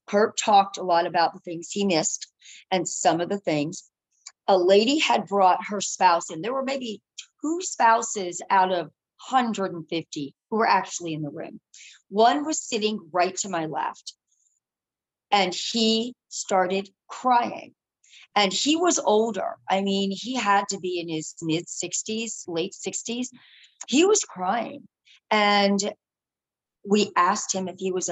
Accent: American